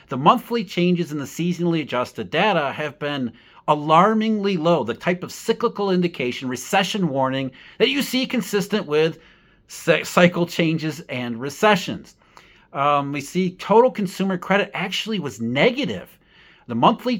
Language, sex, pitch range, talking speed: English, male, 145-195 Hz, 135 wpm